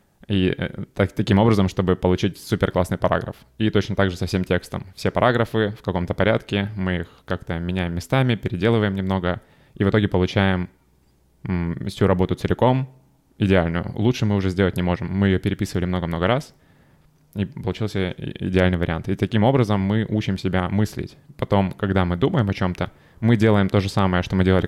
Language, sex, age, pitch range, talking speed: Russian, male, 20-39, 90-105 Hz, 175 wpm